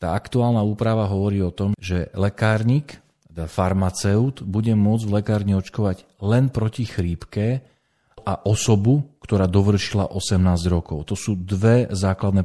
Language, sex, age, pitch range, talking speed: Slovak, male, 40-59, 90-110 Hz, 130 wpm